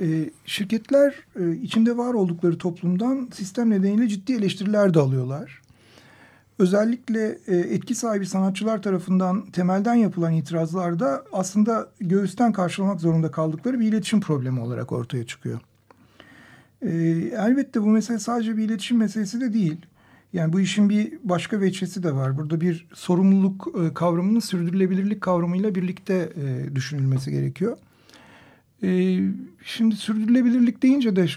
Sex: male